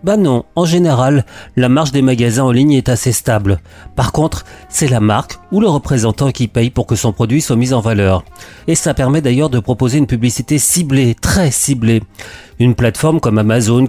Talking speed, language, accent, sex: 200 wpm, French, French, male